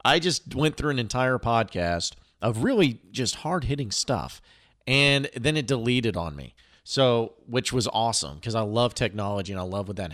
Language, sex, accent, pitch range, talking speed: English, male, American, 100-125 Hz, 185 wpm